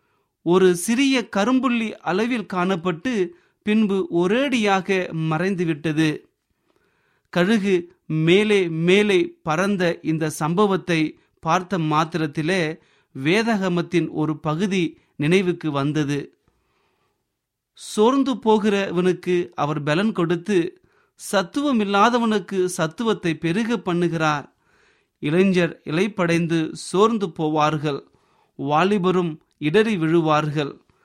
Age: 30-49